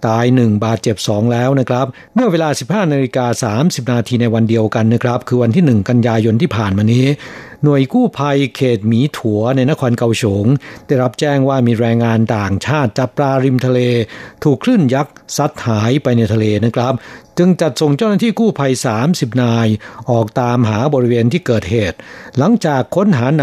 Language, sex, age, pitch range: Thai, male, 60-79, 115-135 Hz